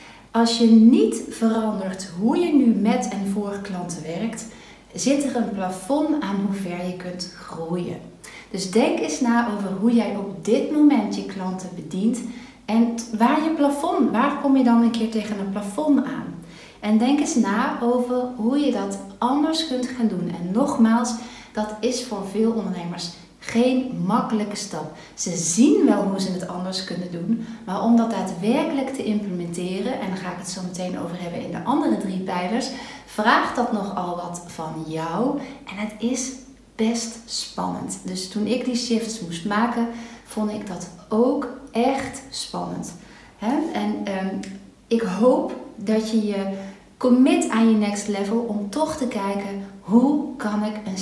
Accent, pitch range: Dutch, 195-245 Hz